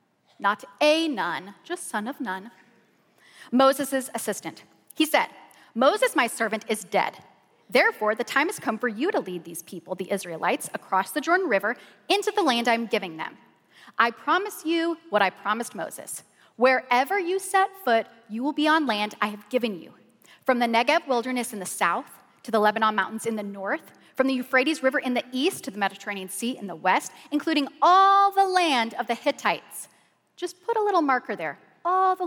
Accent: American